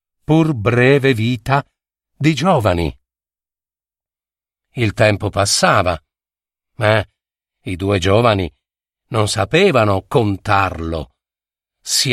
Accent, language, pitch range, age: native, Italian, 100-145 Hz, 50-69